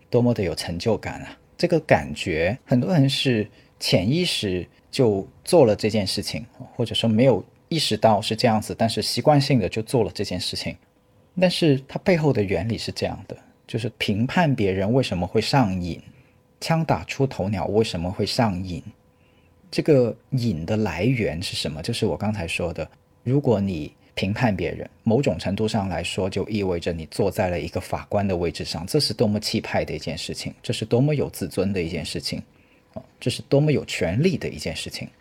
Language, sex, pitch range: Chinese, male, 95-130 Hz